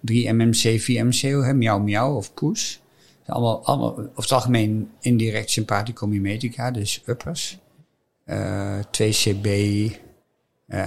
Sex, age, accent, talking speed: male, 50-69, Dutch, 100 wpm